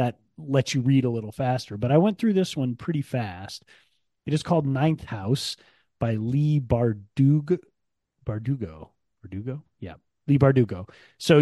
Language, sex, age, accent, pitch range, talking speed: English, male, 30-49, American, 110-140 Hz, 150 wpm